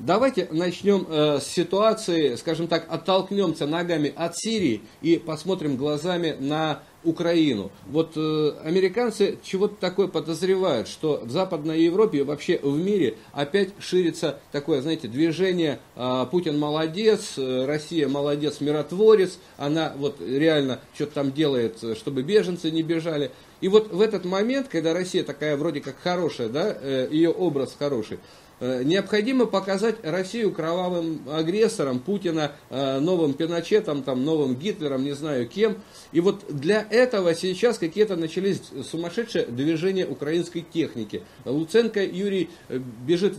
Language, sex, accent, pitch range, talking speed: Russian, male, native, 150-185 Hz, 125 wpm